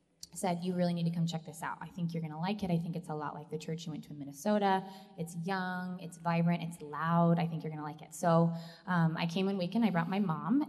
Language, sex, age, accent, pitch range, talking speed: English, female, 20-39, American, 165-195 Hz, 290 wpm